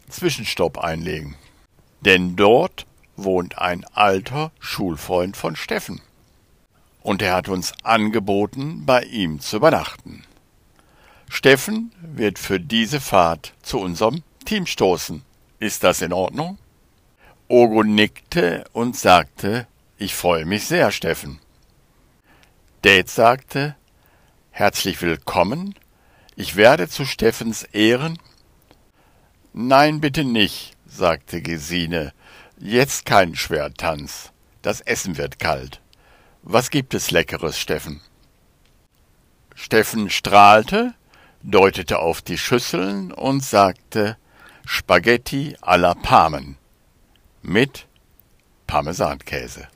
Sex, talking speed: male, 95 wpm